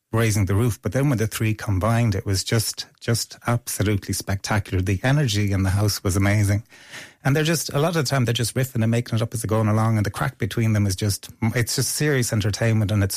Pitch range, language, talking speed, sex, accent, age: 100-120 Hz, English, 240 wpm, male, Irish, 30-49